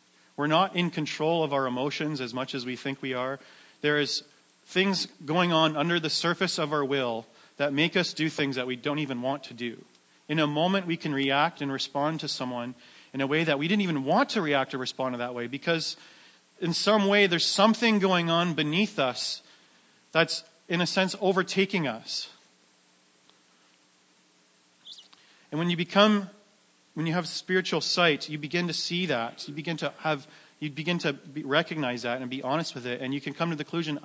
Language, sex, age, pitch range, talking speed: English, male, 40-59, 125-170 Hz, 200 wpm